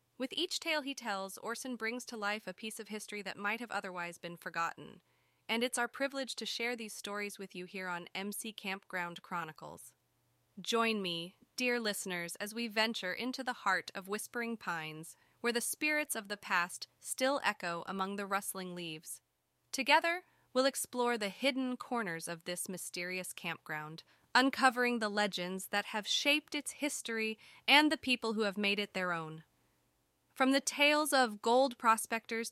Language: English